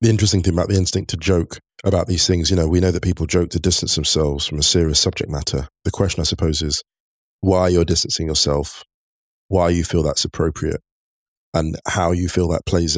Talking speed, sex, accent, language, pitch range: 215 wpm, male, British, English, 80-95 Hz